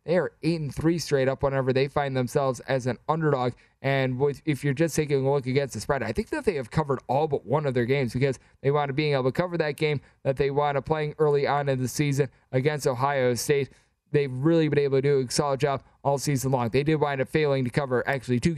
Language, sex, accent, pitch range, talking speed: English, male, American, 130-150 Hz, 250 wpm